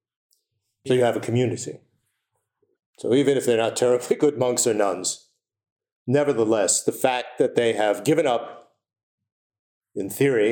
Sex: male